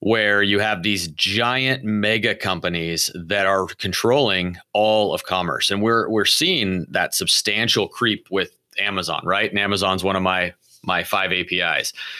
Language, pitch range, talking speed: English, 90-105 Hz, 155 wpm